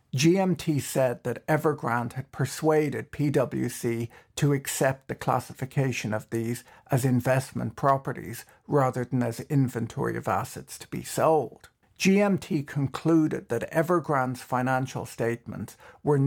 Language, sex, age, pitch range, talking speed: English, male, 60-79, 120-145 Hz, 120 wpm